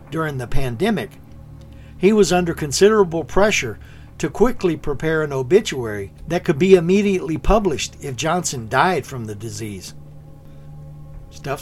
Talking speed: 130 wpm